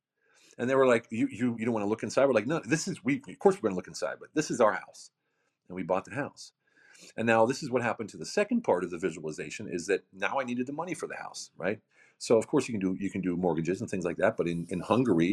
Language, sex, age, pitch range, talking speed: English, male, 40-59, 80-120 Hz, 300 wpm